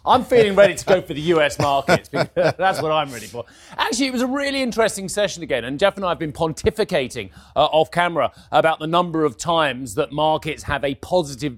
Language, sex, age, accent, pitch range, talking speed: English, male, 30-49, British, 140-190 Hz, 225 wpm